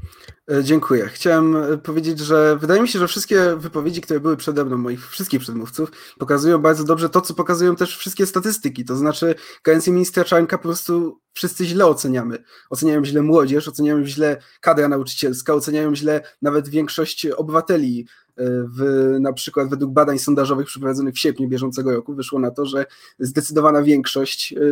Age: 20-39